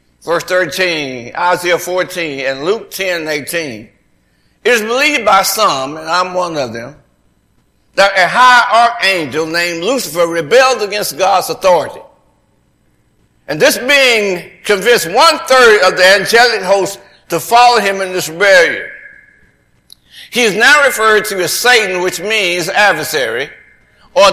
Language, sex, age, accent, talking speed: English, male, 60-79, American, 135 wpm